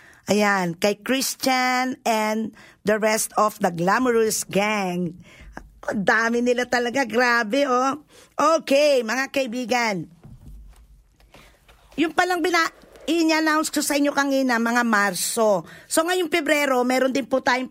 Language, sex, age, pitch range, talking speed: Filipino, female, 50-69, 220-280 Hz, 120 wpm